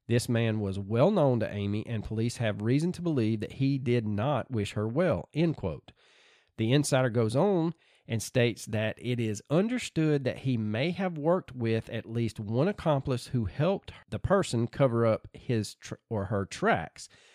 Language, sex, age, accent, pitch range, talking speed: English, male, 40-59, American, 110-150 Hz, 185 wpm